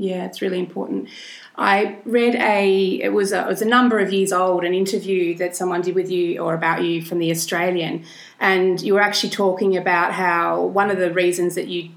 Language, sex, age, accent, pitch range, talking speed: English, female, 30-49, Australian, 175-195 Hz, 205 wpm